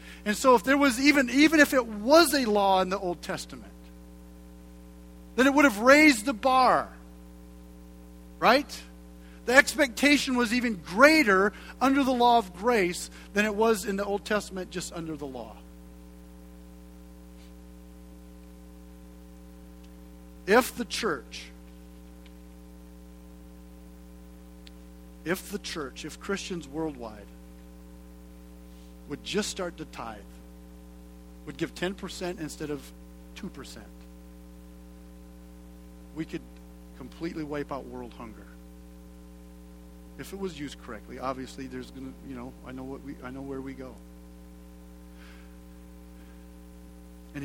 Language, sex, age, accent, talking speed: English, male, 50-69, American, 120 wpm